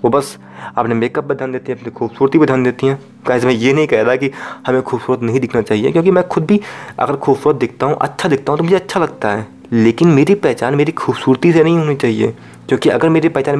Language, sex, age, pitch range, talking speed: Hindi, male, 20-39, 120-155 Hz, 245 wpm